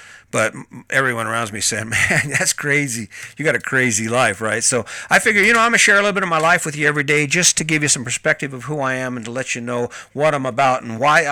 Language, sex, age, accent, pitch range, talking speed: English, male, 50-69, American, 130-165 Hz, 275 wpm